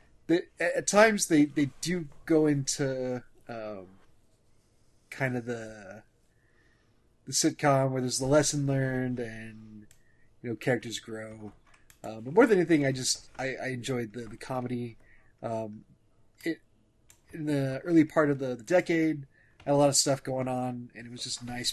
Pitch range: 110-135 Hz